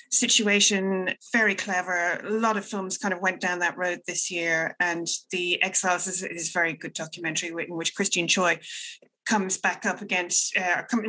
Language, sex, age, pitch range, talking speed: English, female, 30-49, 170-200 Hz, 185 wpm